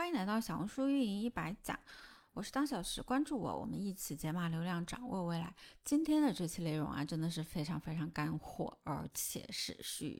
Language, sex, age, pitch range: Chinese, female, 20-39, 160-245 Hz